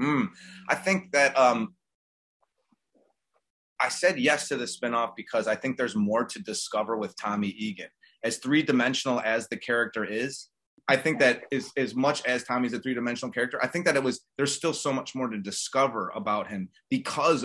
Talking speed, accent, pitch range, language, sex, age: 180 wpm, American, 110-130 Hz, French, male, 30-49